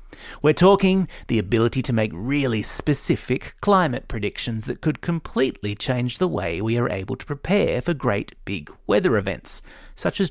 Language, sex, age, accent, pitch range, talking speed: English, male, 30-49, Australian, 115-180 Hz, 165 wpm